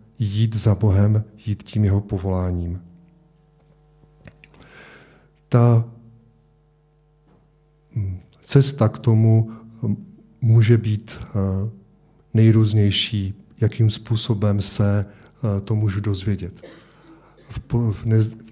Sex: male